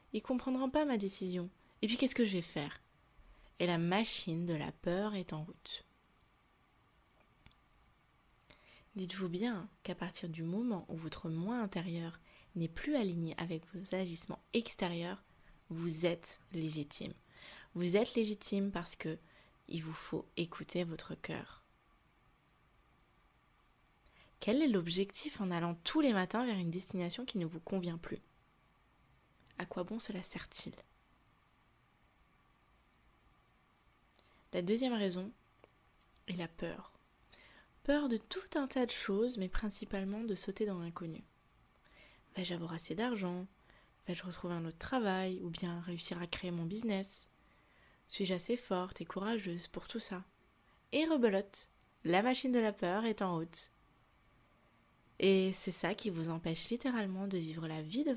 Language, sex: French, female